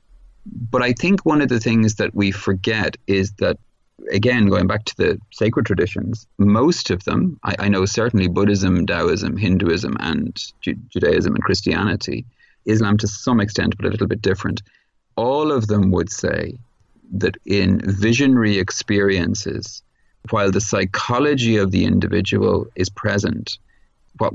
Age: 30-49